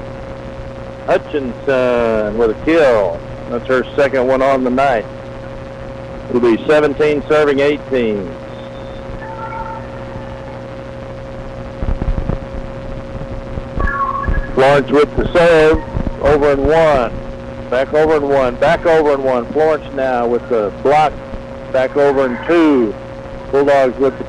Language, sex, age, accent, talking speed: English, male, 50-69, American, 110 wpm